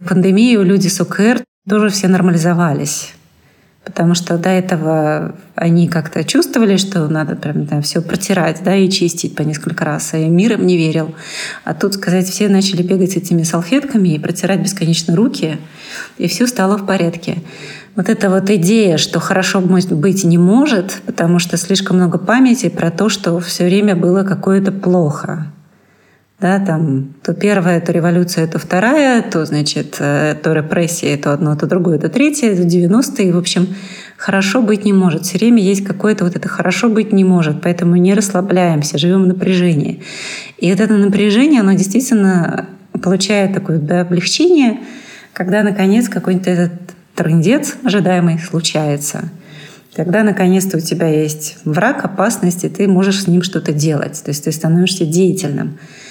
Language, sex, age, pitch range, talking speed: Russian, female, 30-49, 170-195 Hz, 160 wpm